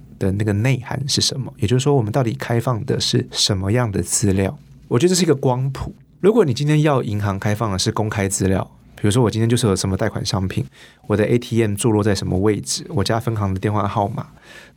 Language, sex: Chinese, male